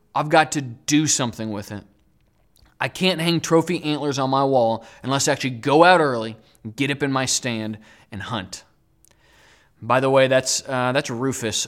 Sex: male